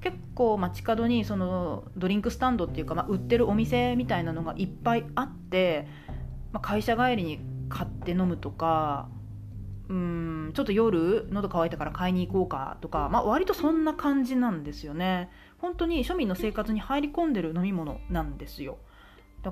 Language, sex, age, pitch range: Japanese, female, 30-49, 145-235 Hz